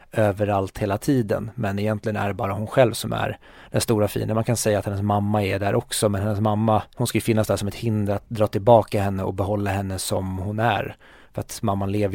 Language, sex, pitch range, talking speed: Swedish, male, 100-115 Hz, 240 wpm